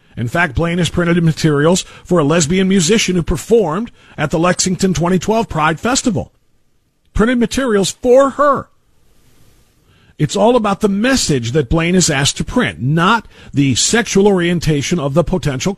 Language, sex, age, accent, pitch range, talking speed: English, male, 50-69, American, 155-205 Hz, 150 wpm